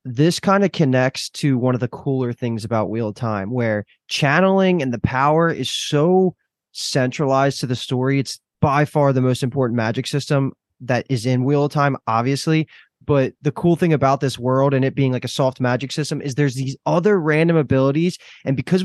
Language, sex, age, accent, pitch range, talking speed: English, male, 20-39, American, 125-150 Hz, 200 wpm